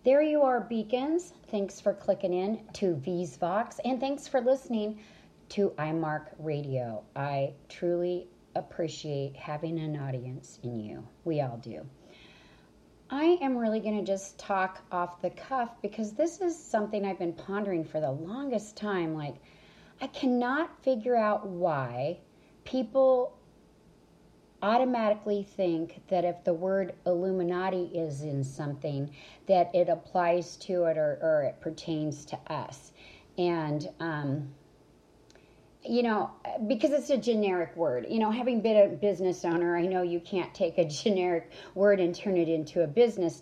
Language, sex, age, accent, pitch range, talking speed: English, female, 40-59, American, 165-215 Hz, 150 wpm